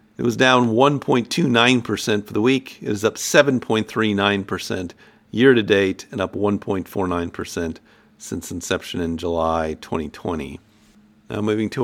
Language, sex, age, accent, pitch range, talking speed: English, male, 50-69, American, 100-125 Hz, 115 wpm